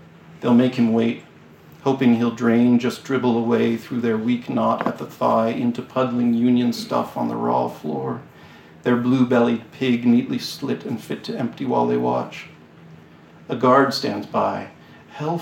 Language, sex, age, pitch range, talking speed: English, male, 50-69, 115-135 Hz, 165 wpm